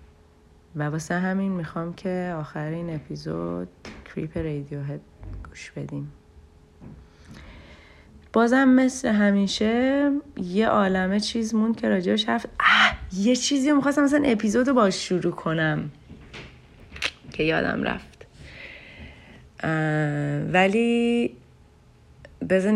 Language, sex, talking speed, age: Persian, female, 85 wpm, 30-49